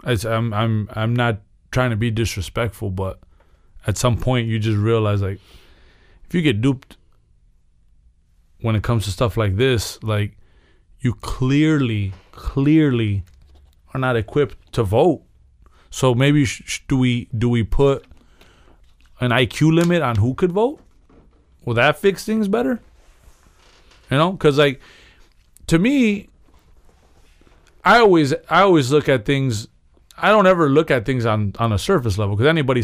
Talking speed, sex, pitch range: 150 wpm, male, 80-130 Hz